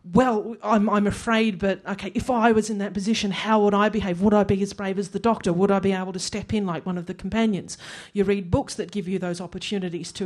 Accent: Australian